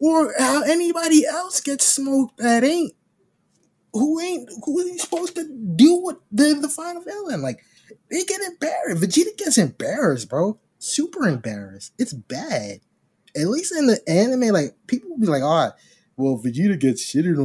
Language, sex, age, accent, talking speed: English, male, 20-39, American, 170 wpm